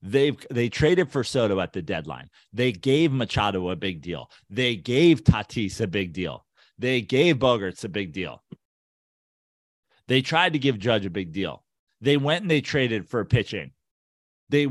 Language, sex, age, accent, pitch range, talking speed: English, male, 30-49, American, 110-150 Hz, 170 wpm